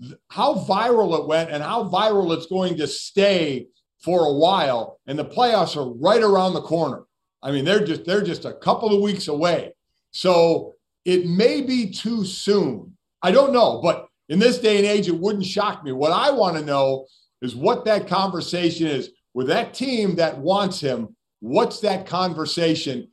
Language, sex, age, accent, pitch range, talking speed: English, male, 50-69, American, 160-210 Hz, 185 wpm